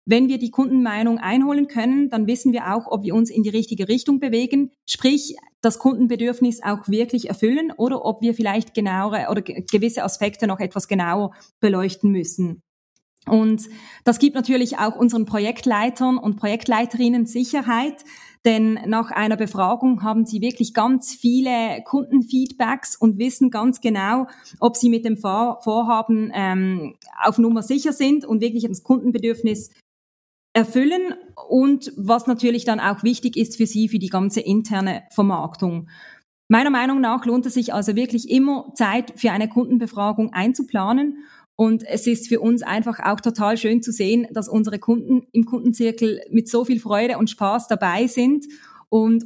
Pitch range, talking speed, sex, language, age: 210-245 Hz, 155 wpm, female, German, 20-39